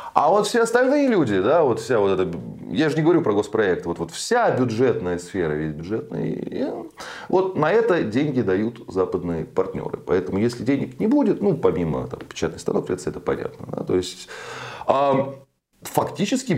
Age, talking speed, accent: 30-49, 165 wpm, native